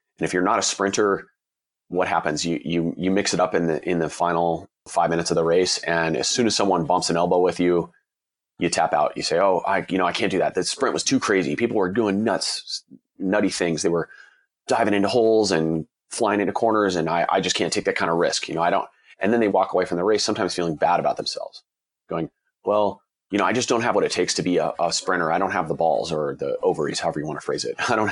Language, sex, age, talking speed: English, male, 30-49, 270 wpm